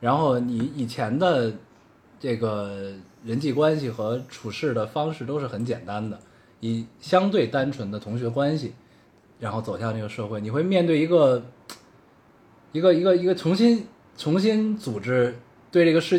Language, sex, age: Chinese, male, 20-39